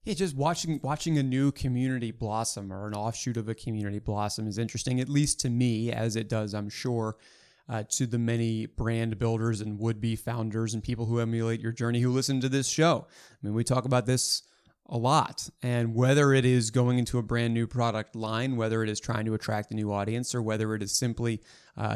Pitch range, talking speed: 110-135 Hz, 220 wpm